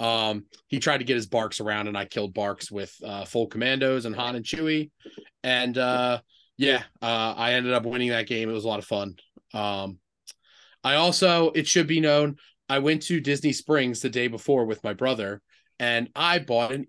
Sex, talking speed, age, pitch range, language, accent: male, 205 wpm, 30-49, 115-145 Hz, English, American